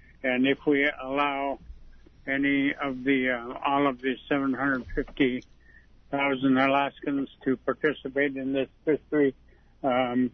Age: 70-89